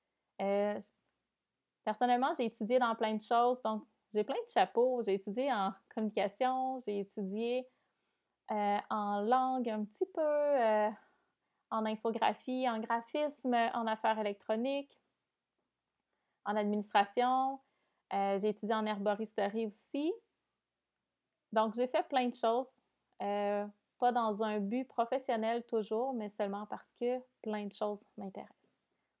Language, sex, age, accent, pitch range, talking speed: French, female, 30-49, Canadian, 210-255 Hz, 125 wpm